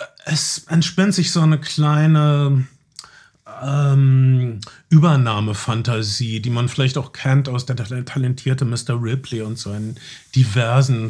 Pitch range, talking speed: 130-150 Hz, 115 wpm